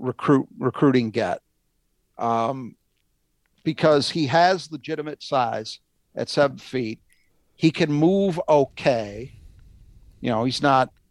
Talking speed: 110 wpm